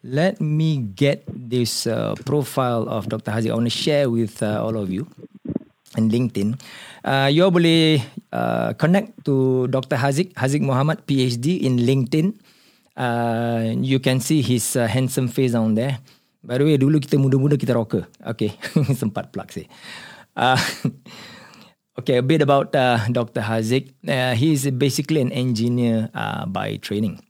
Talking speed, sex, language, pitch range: 160 wpm, male, Malay, 110-140 Hz